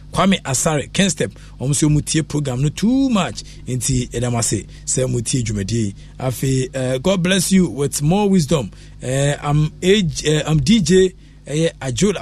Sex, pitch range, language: male, 105-150 Hz, English